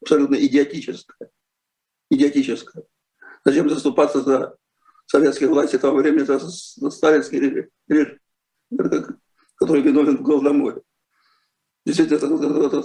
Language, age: Russian, 50-69